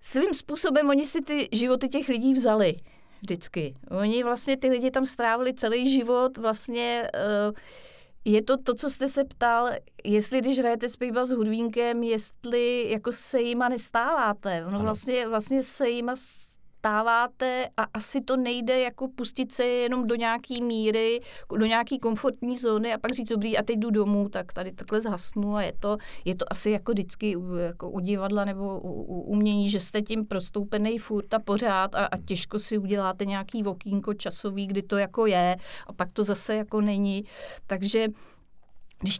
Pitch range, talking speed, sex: 200-235 Hz, 170 wpm, female